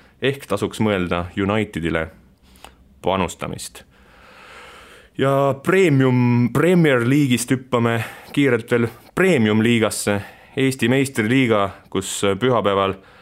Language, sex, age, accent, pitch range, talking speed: English, male, 30-49, Finnish, 90-115 Hz, 85 wpm